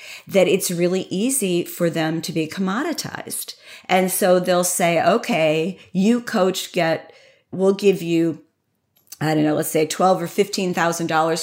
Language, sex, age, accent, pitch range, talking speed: English, female, 40-59, American, 155-190 Hz, 140 wpm